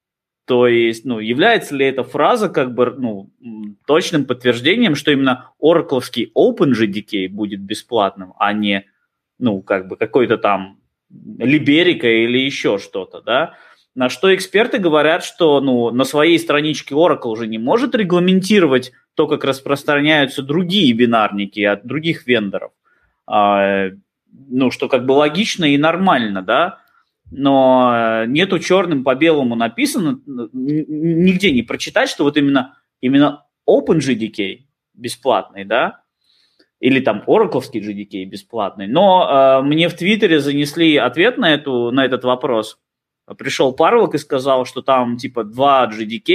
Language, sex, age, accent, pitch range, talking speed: Russian, male, 20-39, native, 115-155 Hz, 130 wpm